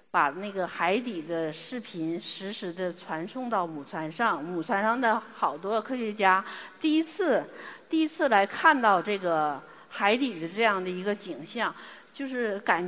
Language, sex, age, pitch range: Chinese, female, 50-69, 195-280 Hz